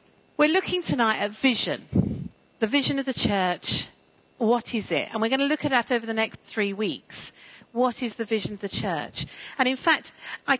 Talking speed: 205 wpm